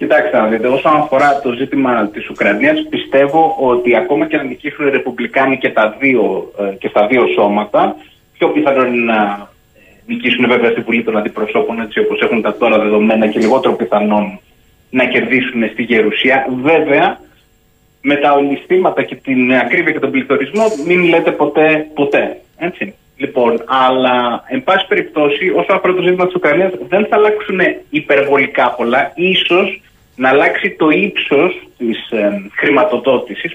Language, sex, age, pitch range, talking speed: Greek, male, 30-49, 120-160 Hz, 150 wpm